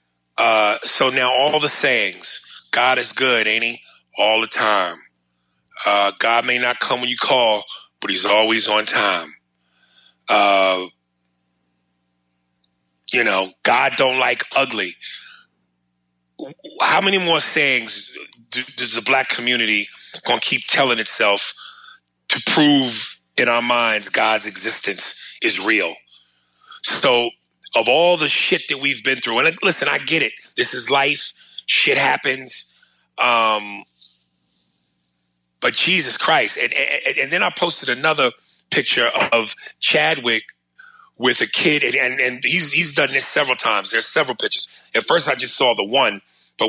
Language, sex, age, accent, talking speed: English, male, 30-49, American, 145 wpm